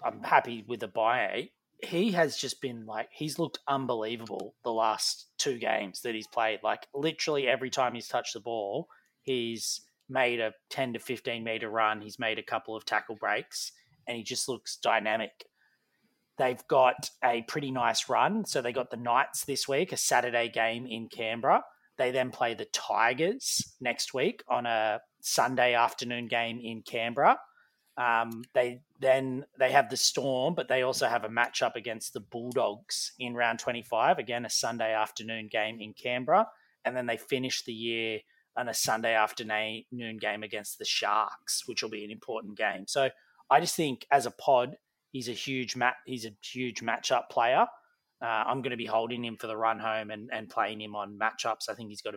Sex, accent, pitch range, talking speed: male, Australian, 110-130 Hz, 185 wpm